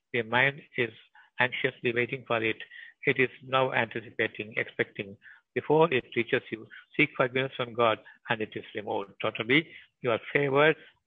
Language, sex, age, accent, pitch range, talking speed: Tamil, male, 60-79, native, 115-135 Hz, 150 wpm